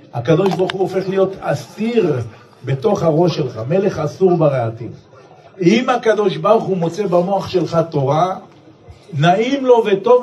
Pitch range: 140-180 Hz